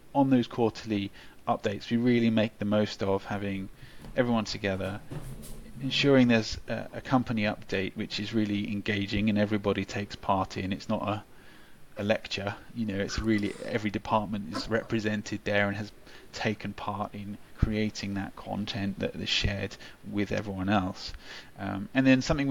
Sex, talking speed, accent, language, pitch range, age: male, 160 wpm, British, English, 100-120 Hz, 30-49